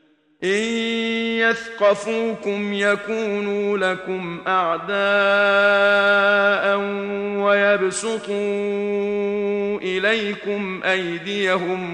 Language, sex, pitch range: Arabic, male, 185-205 Hz